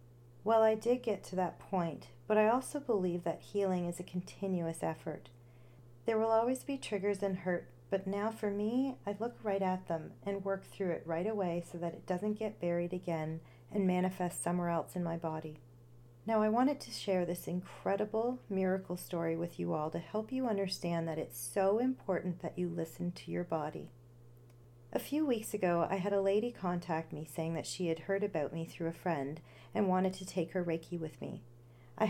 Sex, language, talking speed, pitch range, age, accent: female, English, 200 wpm, 165-200 Hz, 40-59, American